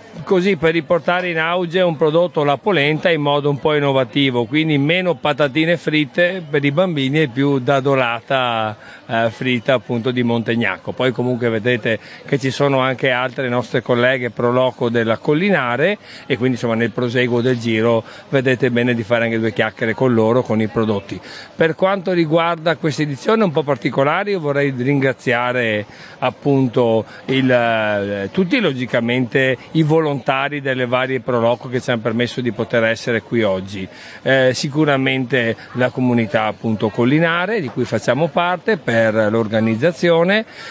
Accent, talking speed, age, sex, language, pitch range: native, 155 wpm, 50-69, male, Italian, 125-160 Hz